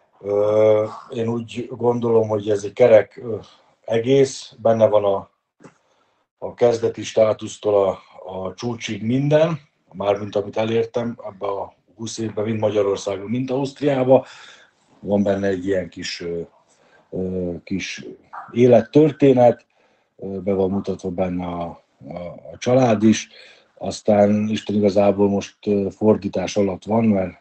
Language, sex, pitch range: Hungarian, male, 95-110 Hz